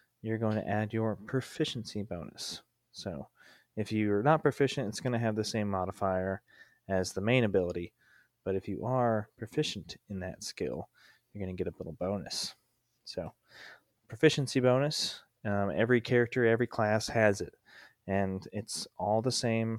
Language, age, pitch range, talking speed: English, 20-39, 100-120 Hz, 160 wpm